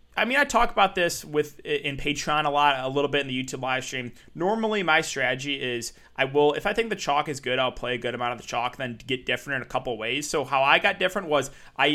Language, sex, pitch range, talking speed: English, male, 120-150 Hz, 280 wpm